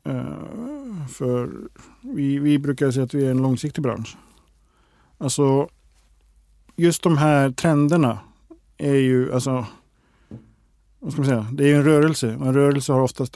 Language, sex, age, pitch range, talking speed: Swedish, male, 50-69, 120-155 Hz, 150 wpm